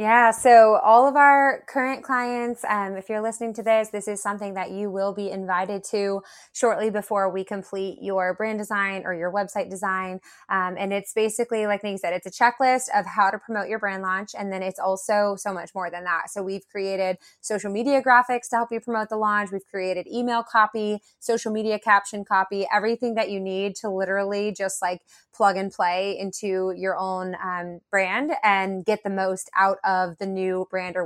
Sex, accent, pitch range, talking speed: female, American, 190-220 Hz, 205 wpm